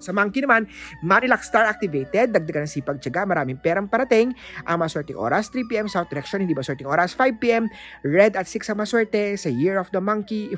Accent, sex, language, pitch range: native, male, Filipino, 155-215 Hz